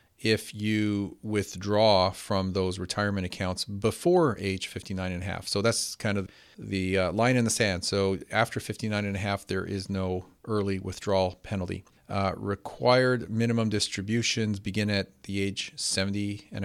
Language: English